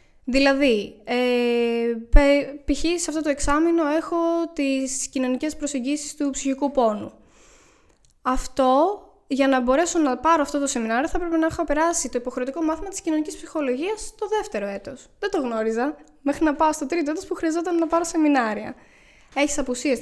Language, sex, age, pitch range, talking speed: Greek, female, 10-29, 235-315 Hz, 160 wpm